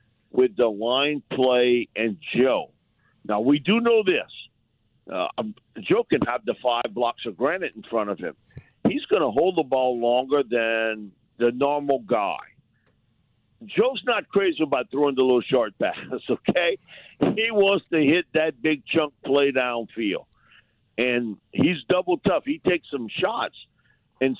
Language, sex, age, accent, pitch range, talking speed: English, male, 50-69, American, 120-180 Hz, 155 wpm